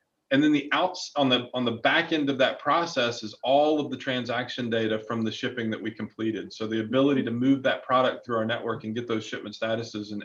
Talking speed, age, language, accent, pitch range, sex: 240 wpm, 40-59, English, American, 115-135 Hz, male